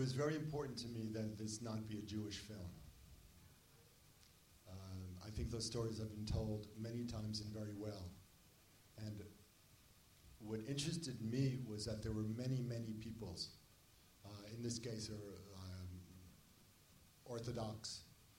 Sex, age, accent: male, 40-59, American